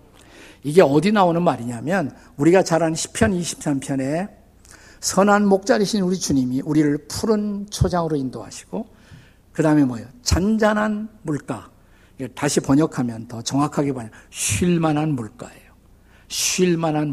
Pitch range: 115-180 Hz